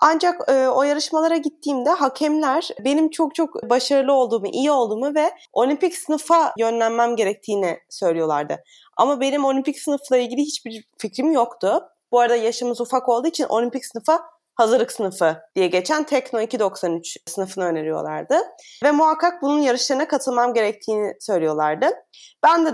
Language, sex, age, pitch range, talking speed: Turkish, female, 20-39, 220-300 Hz, 135 wpm